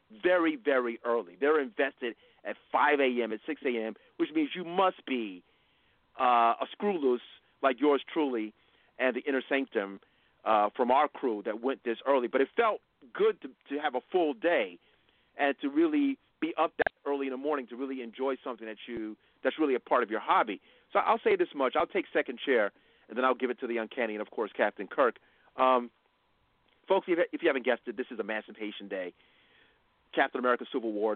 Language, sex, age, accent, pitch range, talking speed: English, male, 40-59, American, 115-170 Hz, 200 wpm